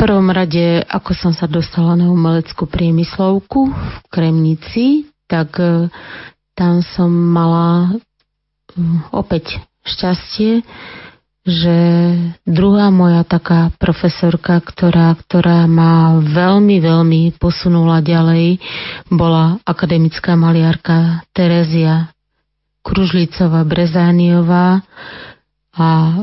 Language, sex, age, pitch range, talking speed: Slovak, female, 30-49, 170-185 Hz, 85 wpm